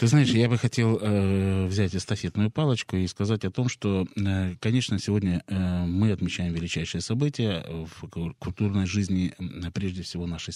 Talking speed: 140 wpm